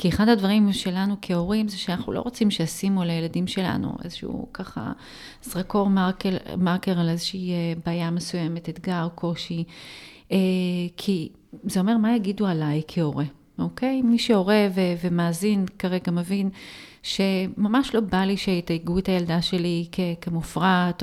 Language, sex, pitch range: Hebrew, female, 175-200 Hz